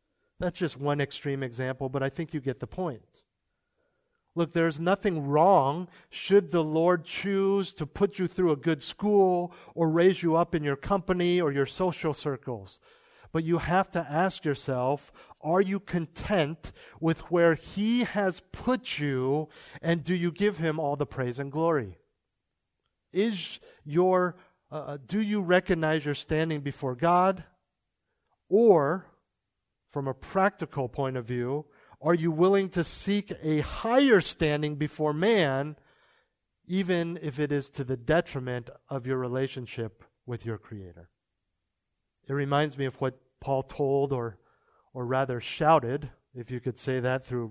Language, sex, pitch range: English, male, 130-180 Hz